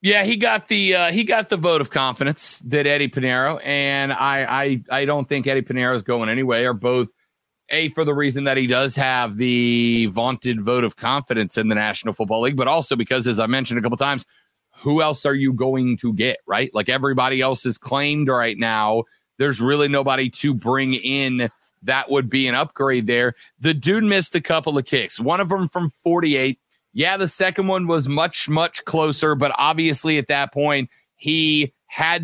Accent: American